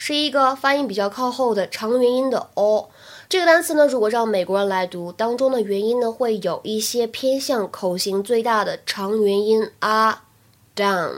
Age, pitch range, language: 20-39, 205-270 Hz, Chinese